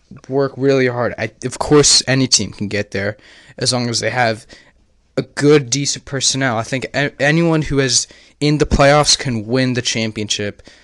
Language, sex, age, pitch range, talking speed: English, male, 10-29, 115-135 Hz, 170 wpm